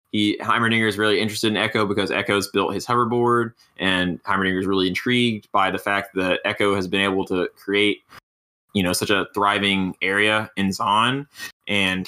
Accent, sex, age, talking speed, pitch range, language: American, male, 20-39, 180 wpm, 95-110 Hz, English